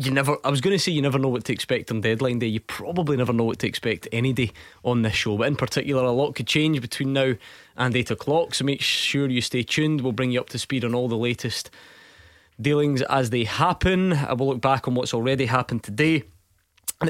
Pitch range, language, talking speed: 115-145 Hz, English, 245 wpm